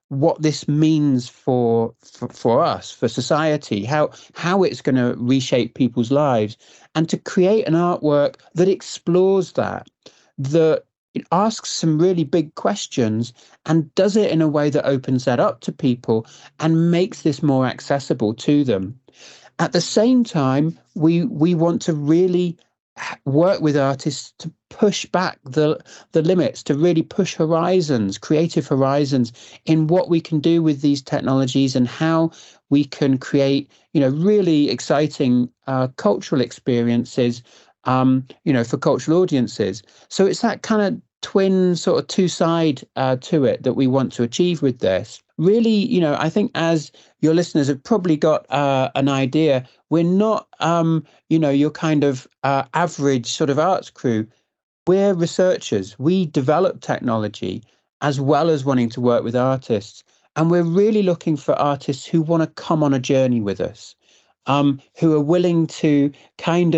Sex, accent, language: male, British, English